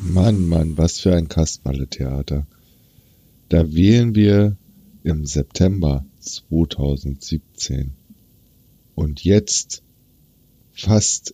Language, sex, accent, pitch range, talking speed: German, male, German, 75-95 Hz, 85 wpm